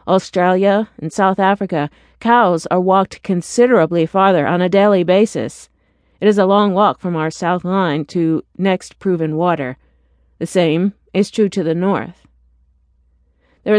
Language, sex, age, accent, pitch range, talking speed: English, female, 50-69, American, 160-200 Hz, 150 wpm